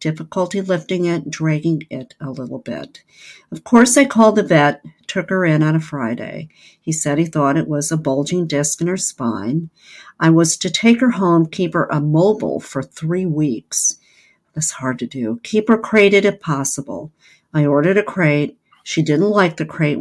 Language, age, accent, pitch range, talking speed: English, 50-69, American, 145-180 Hz, 185 wpm